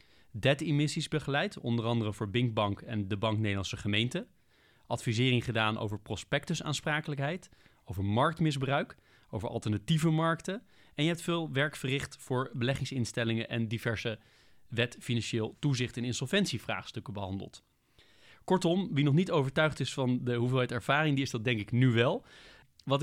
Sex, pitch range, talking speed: male, 110-135 Hz, 145 wpm